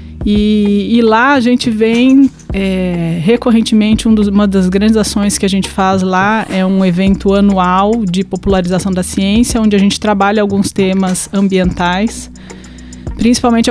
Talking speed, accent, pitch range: 140 wpm, Brazilian, 190-220 Hz